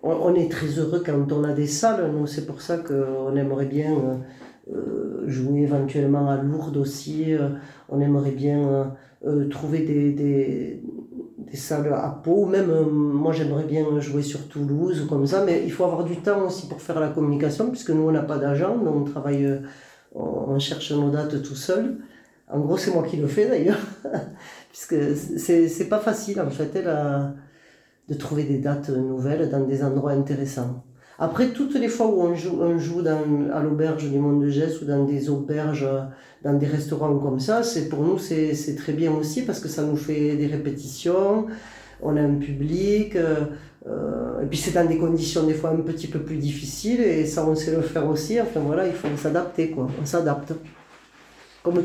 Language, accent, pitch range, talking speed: French, French, 145-165 Hz, 195 wpm